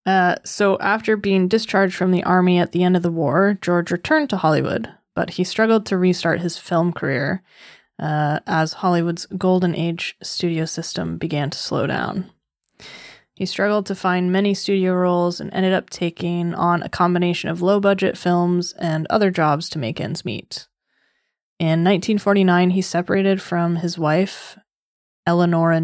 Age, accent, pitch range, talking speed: 20-39, American, 165-195 Hz, 165 wpm